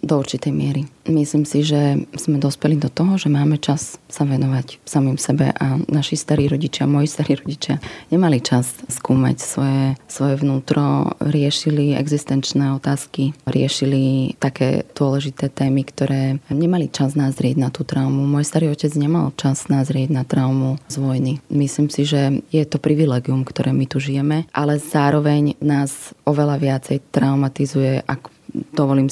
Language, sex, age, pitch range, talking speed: Slovak, female, 20-39, 135-150 Hz, 150 wpm